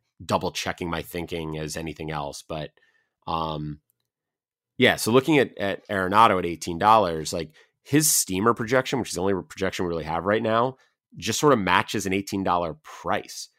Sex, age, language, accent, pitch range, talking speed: male, 30-49, English, American, 85-105 Hz, 170 wpm